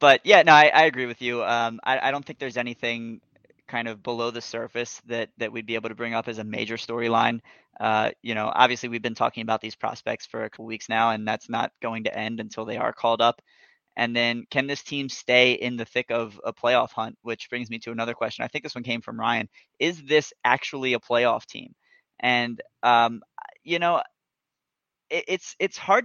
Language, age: English, 20-39